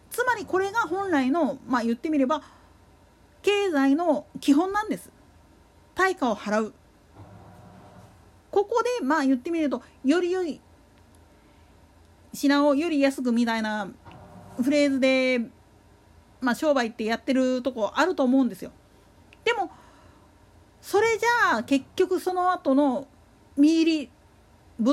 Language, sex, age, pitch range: Japanese, female, 40-59, 235-345 Hz